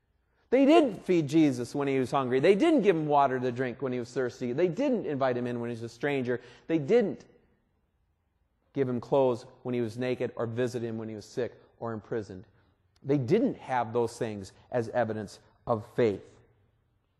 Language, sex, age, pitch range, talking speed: English, male, 40-59, 120-175 Hz, 195 wpm